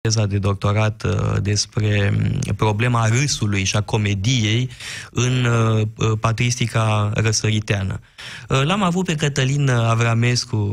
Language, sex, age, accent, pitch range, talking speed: Romanian, male, 20-39, native, 115-160 Hz, 105 wpm